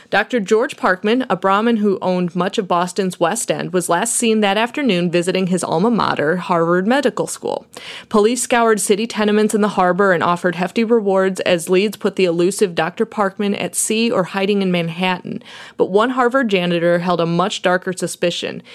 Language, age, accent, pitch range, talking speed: English, 30-49, American, 175-215 Hz, 180 wpm